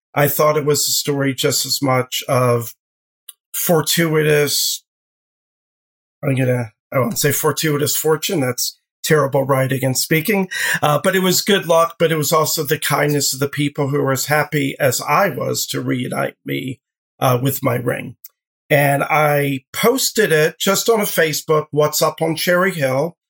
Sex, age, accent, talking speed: male, 40-59, American, 165 wpm